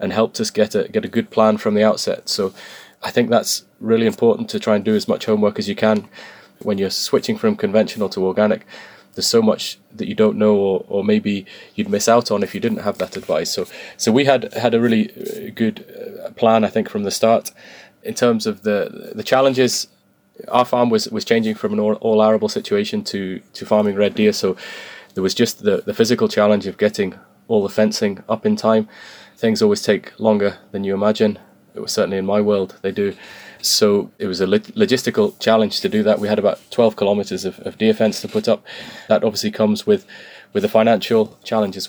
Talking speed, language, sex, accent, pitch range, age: 220 wpm, English, male, British, 105-125 Hz, 20-39